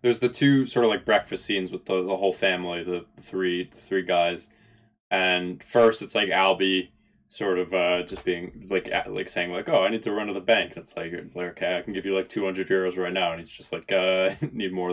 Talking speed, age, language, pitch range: 245 wpm, 20-39, English, 90-110 Hz